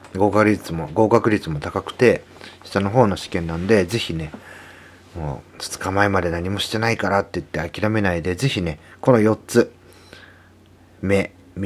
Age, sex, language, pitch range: 40-59, male, Japanese, 85-115 Hz